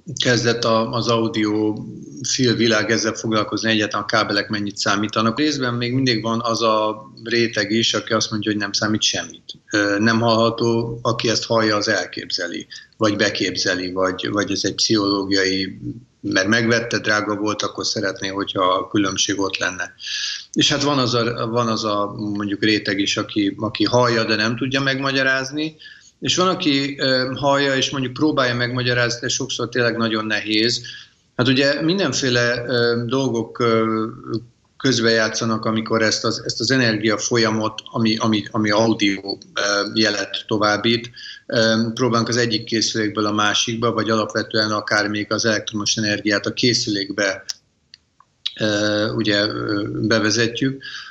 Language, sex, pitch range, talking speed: Hungarian, male, 105-120 Hz, 135 wpm